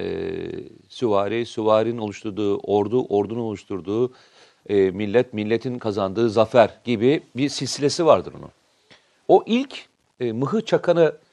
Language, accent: Turkish, native